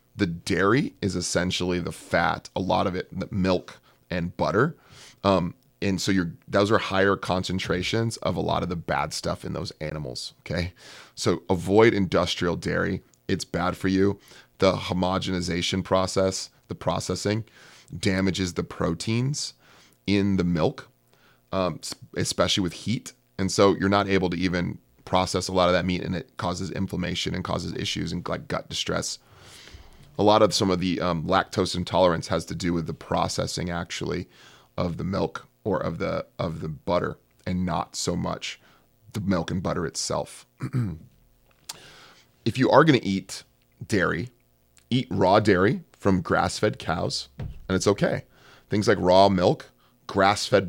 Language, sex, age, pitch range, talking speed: English, male, 30-49, 85-100 Hz, 155 wpm